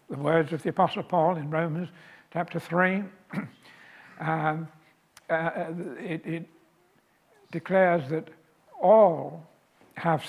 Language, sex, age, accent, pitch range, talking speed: English, male, 60-79, American, 155-190 Hz, 85 wpm